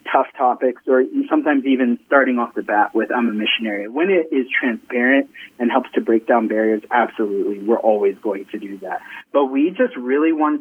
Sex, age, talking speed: male, 30-49, 200 wpm